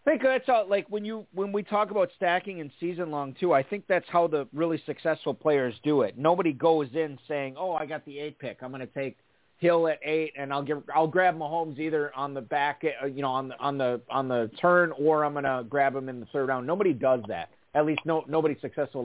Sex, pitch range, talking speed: male, 135-165 Hz, 250 wpm